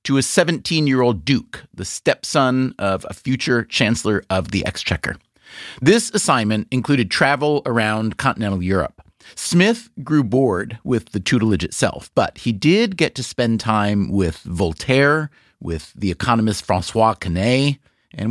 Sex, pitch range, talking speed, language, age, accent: male, 105-140 Hz, 140 wpm, English, 30-49, American